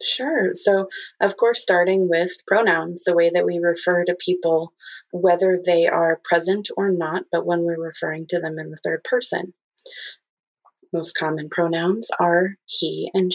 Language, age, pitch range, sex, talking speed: English, 30-49, 170-195 Hz, female, 160 wpm